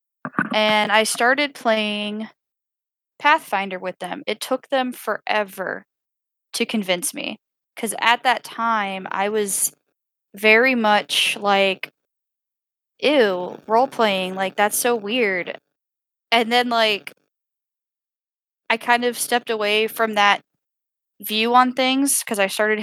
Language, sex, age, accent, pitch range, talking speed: English, female, 10-29, American, 195-230 Hz, 120 wpm